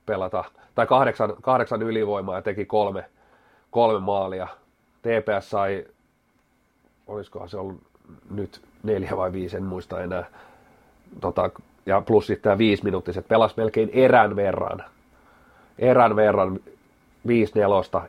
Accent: native